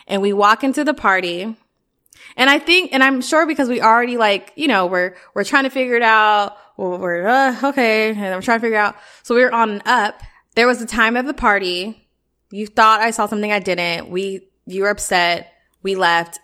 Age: 20-39